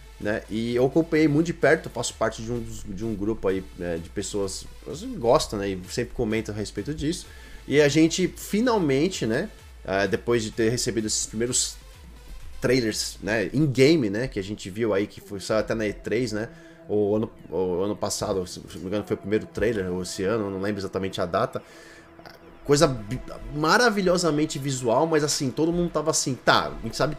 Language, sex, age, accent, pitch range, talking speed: Portuguese, male, 20-39, Brazilian, 105-155 Hz, 195 wpm